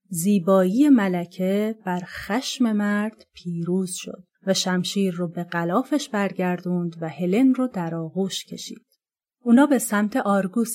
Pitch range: 180-240 Hz